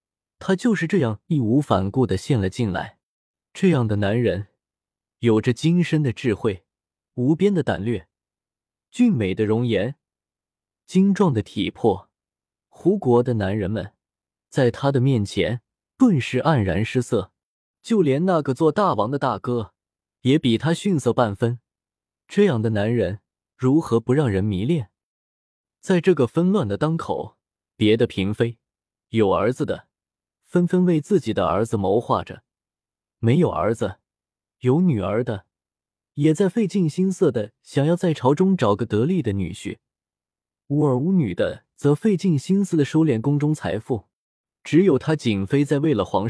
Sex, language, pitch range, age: male, Chinese, 105-160 Hz, 20-39